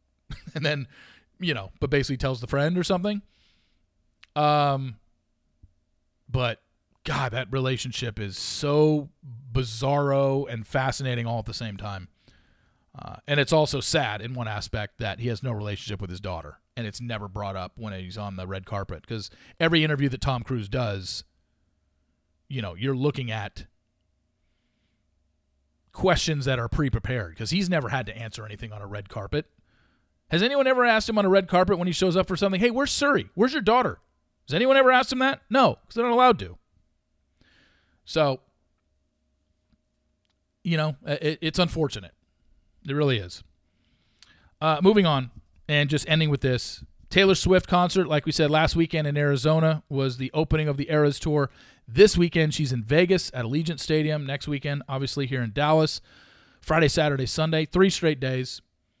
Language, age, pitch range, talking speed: English, 40-59, 100-155 Hz, 170 wpm